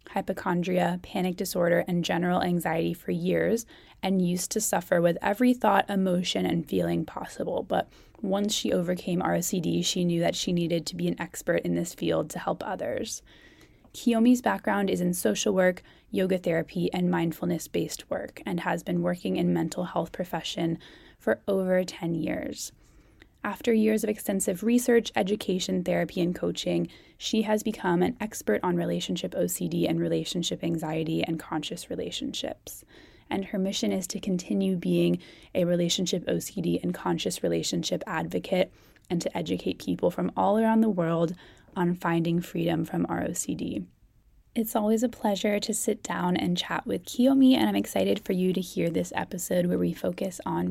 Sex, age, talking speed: female, 20-39, 160 wpm